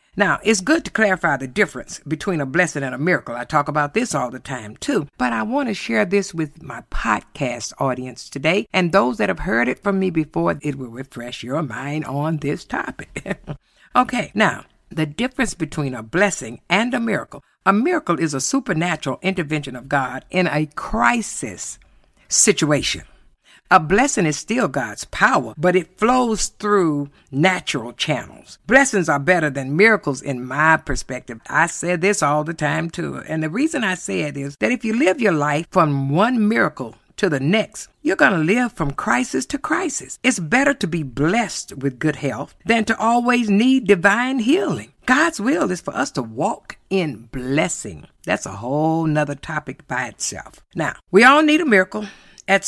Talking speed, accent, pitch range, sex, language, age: 185 wpm, American, 140-210 Hz, female, English, 60-79